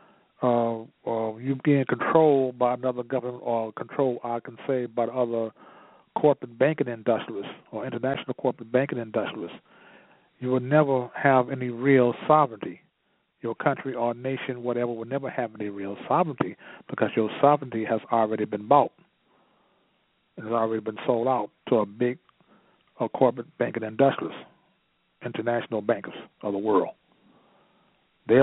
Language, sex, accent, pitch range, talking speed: English, male, American, 115-140 Hz, 140 wpm